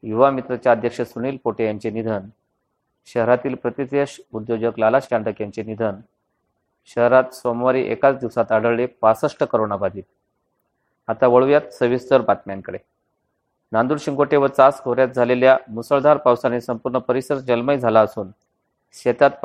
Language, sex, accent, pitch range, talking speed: Marathi, male, native, 115-130 Hz, 85 wpm